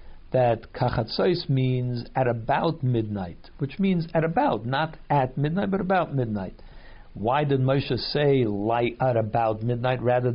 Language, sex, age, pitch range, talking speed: English, male, 60-79, 110-145 Hz, 145 wpm